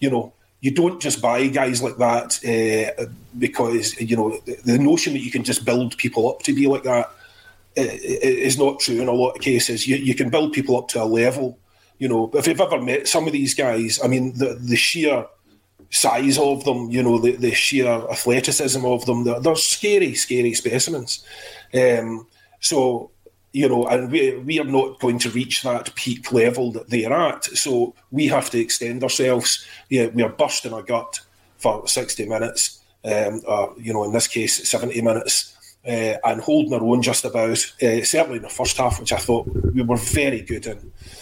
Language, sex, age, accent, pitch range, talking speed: English, male, 30-49, British, 115-130 Hz, 205 wpm